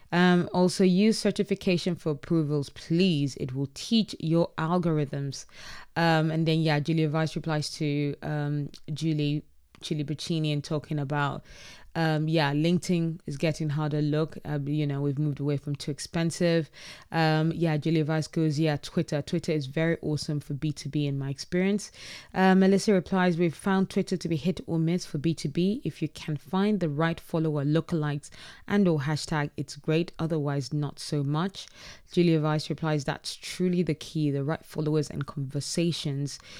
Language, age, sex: English, 20-39, female